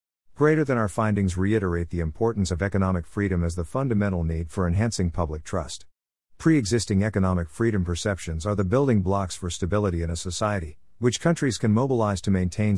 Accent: American